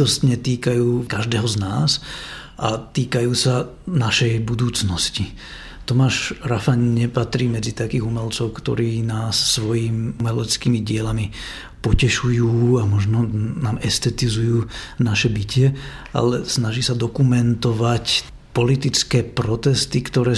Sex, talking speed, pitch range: male, 100 wpm, 110-120 Hz